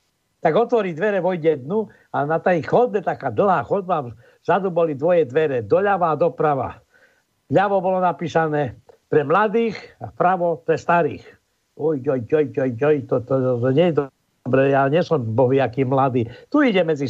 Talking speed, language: 165 wpm, Slovak